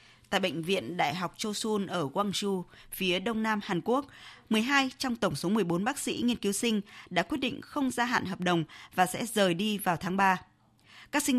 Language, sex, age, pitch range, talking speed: Vietnamese, female, 20-39, 185-240 Hz, 210 wpm